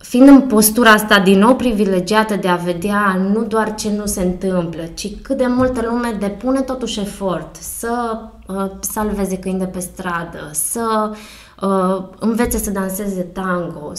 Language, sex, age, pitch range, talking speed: Romanian, female, 20-39, 180-215 Hz, 145 wpm